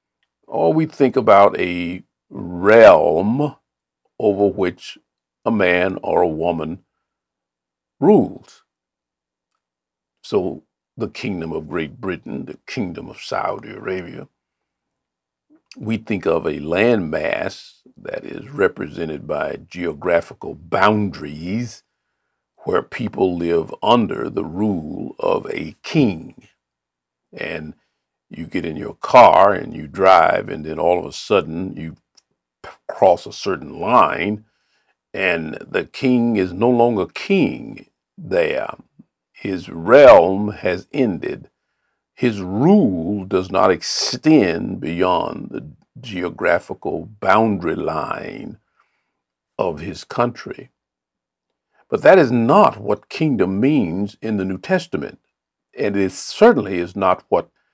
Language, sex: English, male